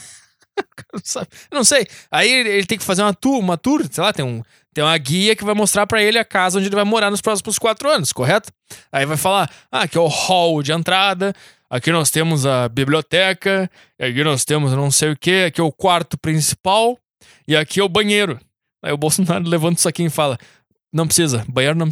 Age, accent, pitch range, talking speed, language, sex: 20-39, Brazilian, 165-240 Hz, 215 wpm, Portuguese, male